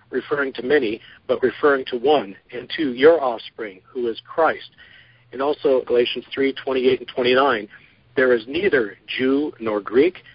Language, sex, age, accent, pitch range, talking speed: English, male, 50-69, American, 125-175 Hz, 145 wpm